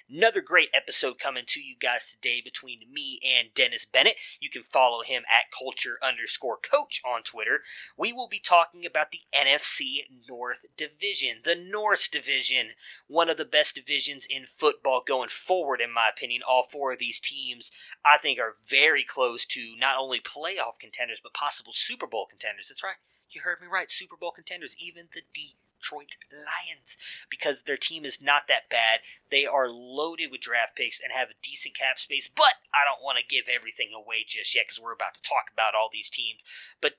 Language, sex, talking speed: English, male, 195 wpm